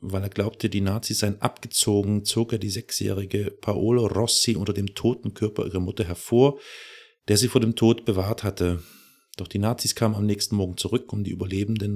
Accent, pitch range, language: German, 95-110 Hz, German